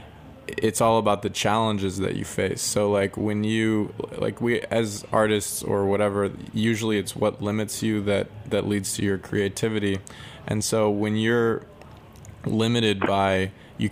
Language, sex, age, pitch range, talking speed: English, male, 20-39, 100-110 Hz, 155 wpm